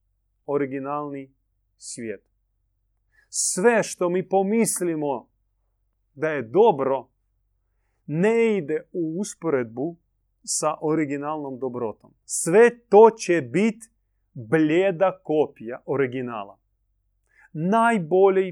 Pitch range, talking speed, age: 100-170 Hz, 80 wpm, 30-49